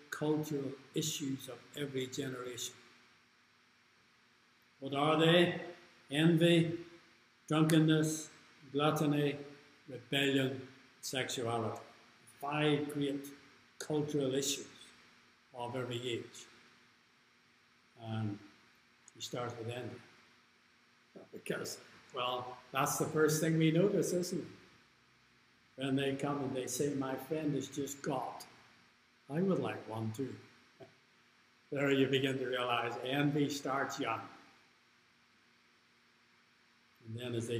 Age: 60-79